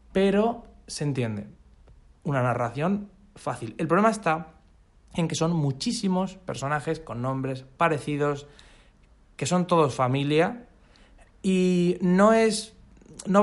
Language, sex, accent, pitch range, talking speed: Spanish, male, Spanish, 155-195 Hz, 110 wpm